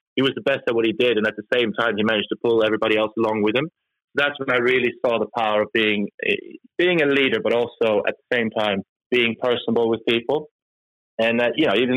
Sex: male